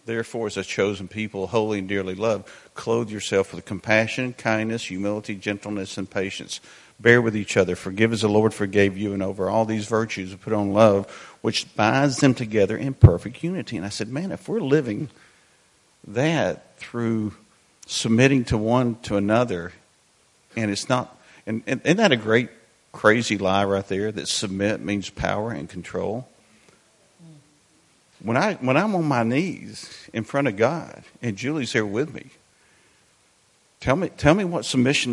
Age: 50-69